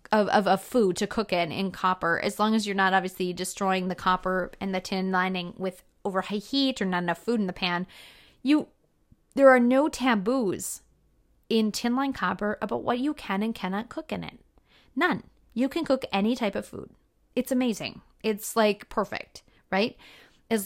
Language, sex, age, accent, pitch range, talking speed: English, female, 30-49, American, 190-230 Hz, 190 wpm